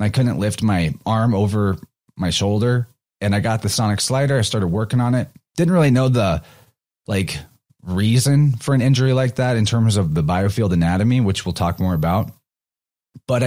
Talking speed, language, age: 185 wpm, English, 30-49